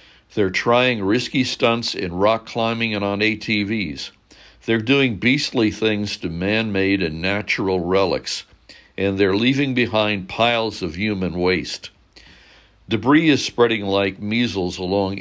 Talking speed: 130 wpm